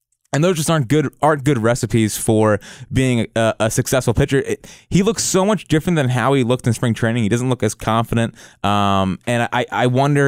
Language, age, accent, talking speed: English, 20-39, American, 215 wpm